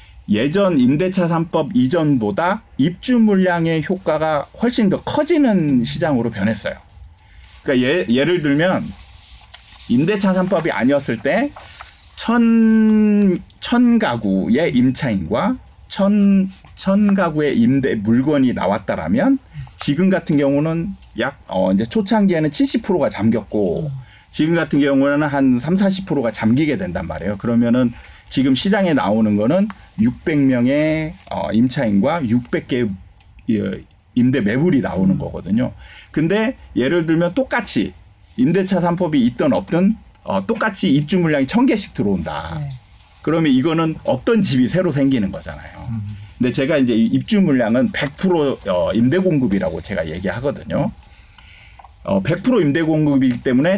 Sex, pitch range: male, 125-200 Hz